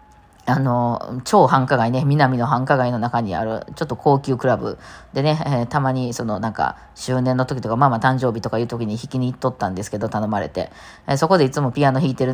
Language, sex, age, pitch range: Japanese, female, 20-39, 120-160 Hz